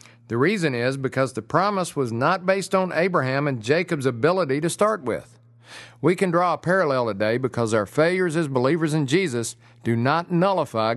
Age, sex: 50-69, male